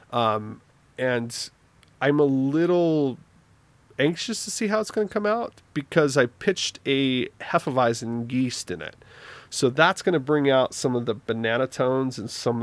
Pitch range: 115-140 Hz